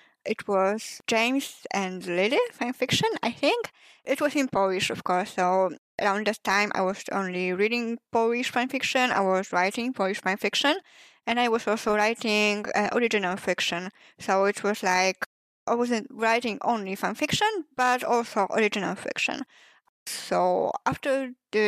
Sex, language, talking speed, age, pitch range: female, English, 160 wpm, 10-29, 190-240 Hz